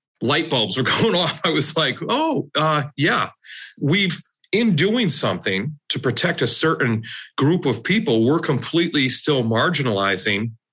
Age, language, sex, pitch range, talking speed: 40-59, English, male, 110-140 Hz, 145 wpm